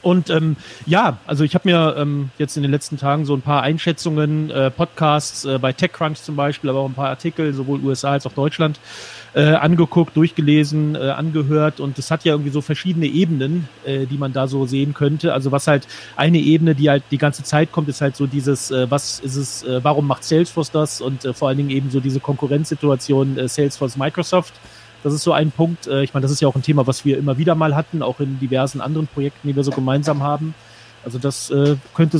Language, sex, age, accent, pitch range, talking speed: English, male, 40-59, German, 135-155 Hz, 225 wpm